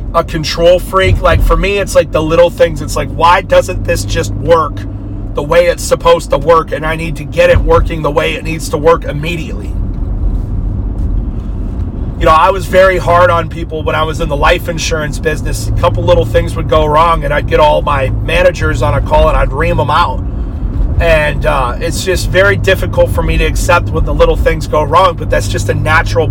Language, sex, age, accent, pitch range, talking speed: English, male, 30-49, American, 95-125 Hz, 220 wpm